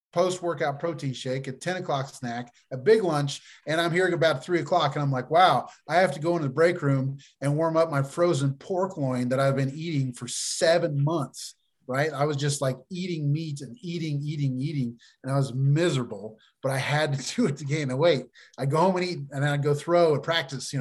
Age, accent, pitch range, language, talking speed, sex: 30-49, American, 140-185 Hz, English, 235 wpm, male